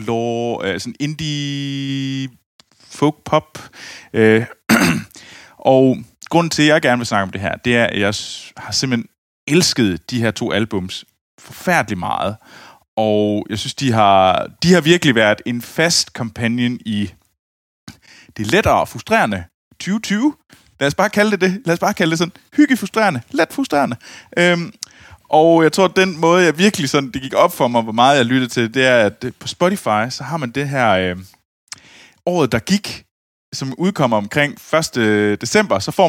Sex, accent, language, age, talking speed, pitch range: male, native, Danish, 20-39, 175 wpm, 110-165 Hz